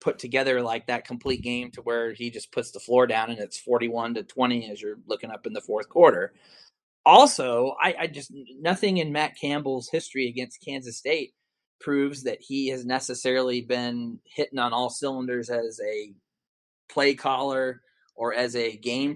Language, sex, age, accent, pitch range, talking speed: English, male, 20-39, American, 115-140 Hz, 180 wpm